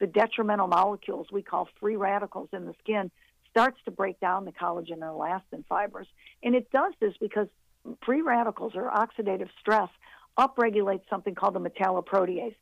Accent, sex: American, female